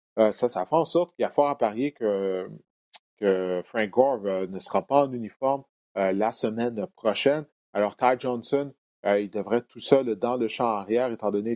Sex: male